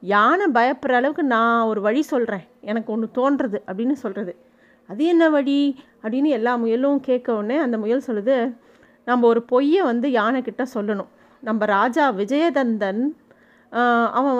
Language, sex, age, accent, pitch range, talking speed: Tamil, female, 30-49, native, 230-285 Hz, 140 wpm